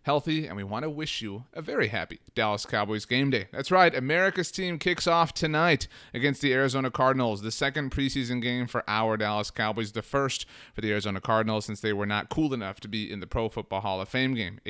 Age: 30-49